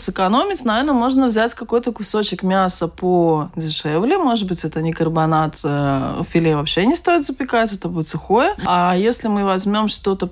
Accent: native